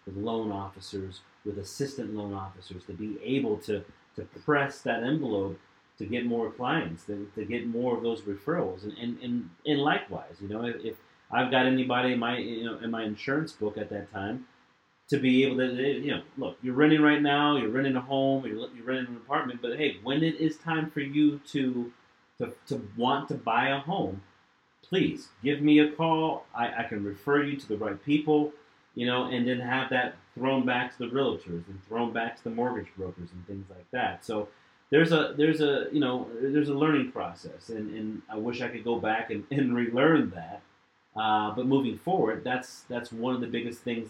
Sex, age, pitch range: male, 30-49, 105-135 Hz